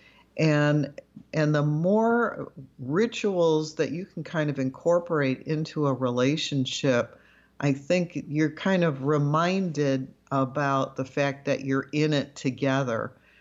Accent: American